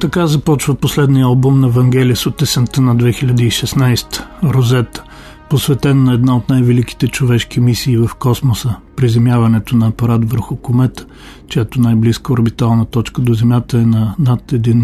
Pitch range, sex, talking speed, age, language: 120-140 Hz, male, 150 wpm, 40-59, Bulgarian